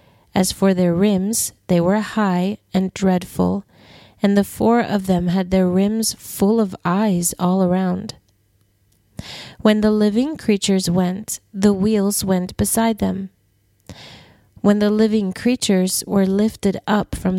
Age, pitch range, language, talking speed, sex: 30-49, 180-215 Hz, English, 140 wpm, female